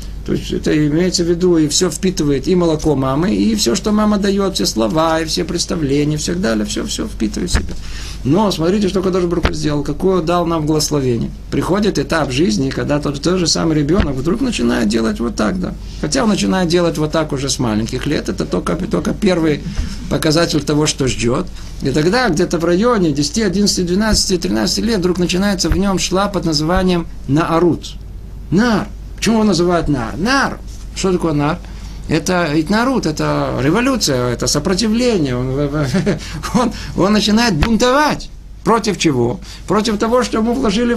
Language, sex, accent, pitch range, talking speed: Russian, male, native, 150-210 Hz, 175 wpm